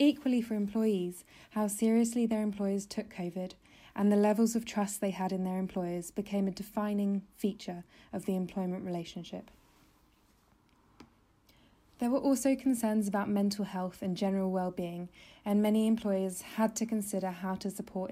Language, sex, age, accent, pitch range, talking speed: English, female, 20-39, British, 180-210 Hz, 150 wpm